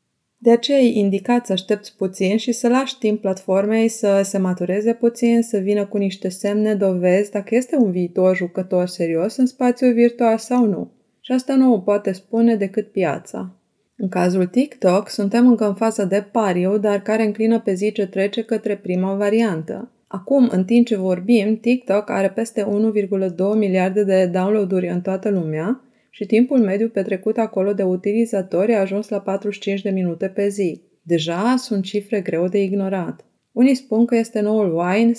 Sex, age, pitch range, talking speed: female, 20-39, 190-230 Hz, 175 wpm